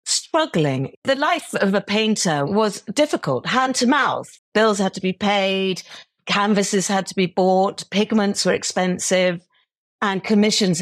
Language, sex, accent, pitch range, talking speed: English, female, British, 160-210 Hz, 145 wpm